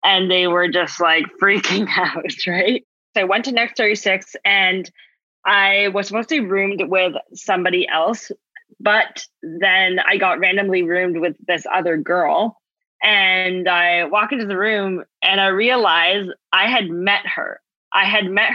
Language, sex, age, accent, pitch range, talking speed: English, female, 20-39, American, 170-200 Hz, 160 wpm